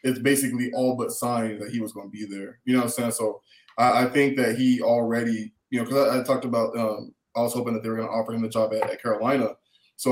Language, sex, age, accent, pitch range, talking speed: English, male, 20-39, American, 110-140 Hz, 285 wpm